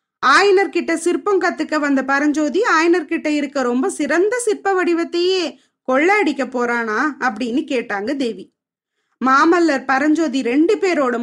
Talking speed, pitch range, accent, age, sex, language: 110 wpm, 265-340 Hz, native, 20-39, female, Tamil